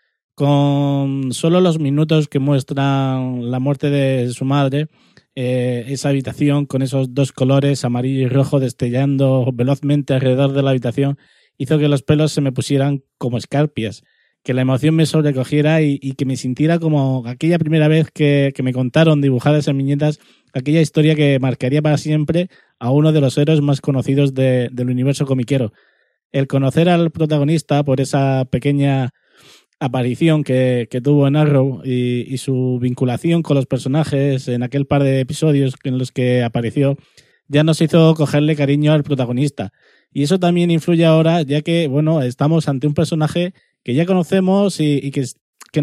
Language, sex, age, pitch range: Spanish, male, 20-39, 130-155 Hz